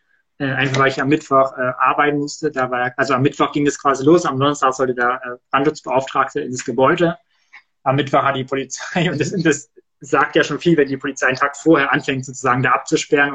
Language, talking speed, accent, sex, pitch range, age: German, 215 wpm, German, male, 135-155 Hz, 20-39